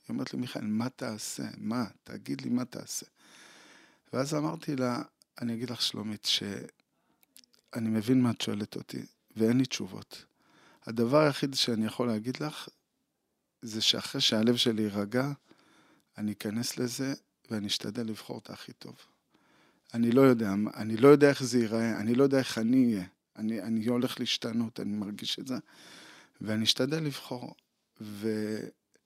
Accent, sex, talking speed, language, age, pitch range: native, male, 155 wpm, Hebrew, 50-69, 110-130 Hz